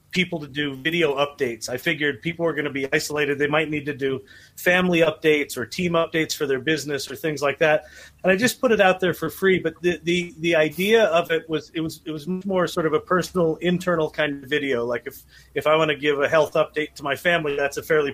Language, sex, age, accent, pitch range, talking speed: English, male, 40-59, American, 145-180 Hz, 250 wpm